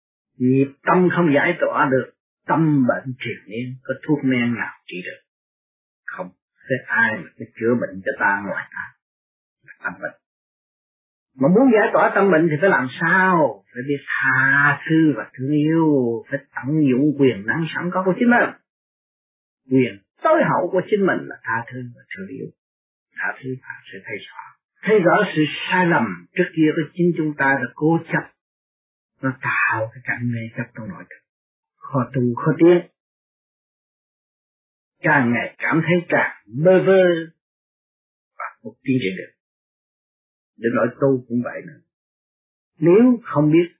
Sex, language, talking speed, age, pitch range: male, Vietnamese, 165 wpm, 30-49, 125-170 Hz